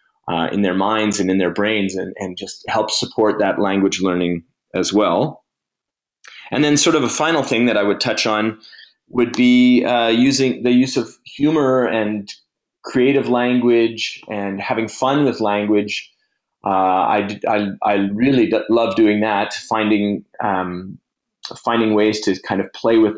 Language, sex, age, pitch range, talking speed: English, male, 30-49, 95-115 Hz, 165 wpm